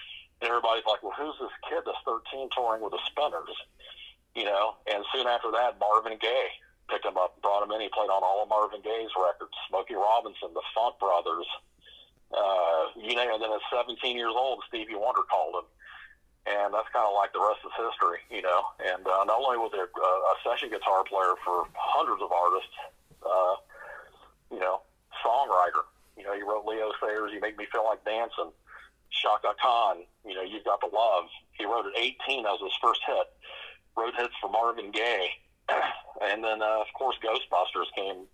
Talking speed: 195 wpm